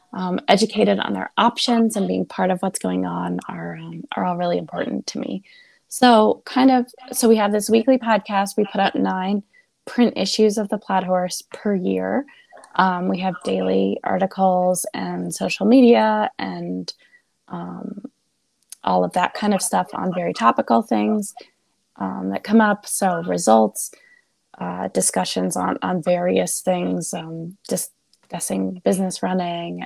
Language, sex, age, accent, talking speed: English, female, 20-39, American, 155 wpm